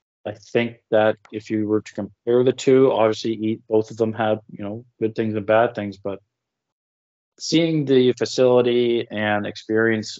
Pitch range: 100-120 Hz